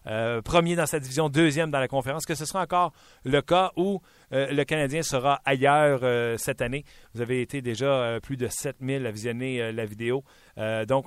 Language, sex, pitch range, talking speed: French, male, 115-145 Hz, 210 wpm